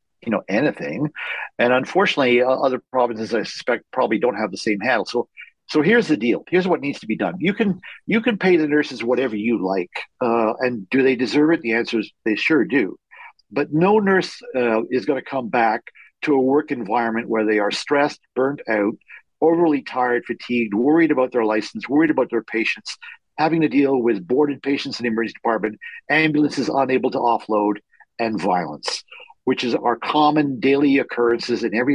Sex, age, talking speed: male, 50-69, 190 wpm